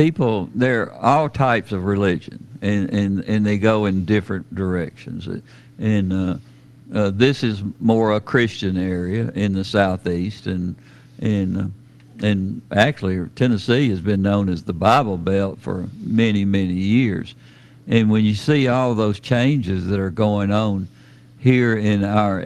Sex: male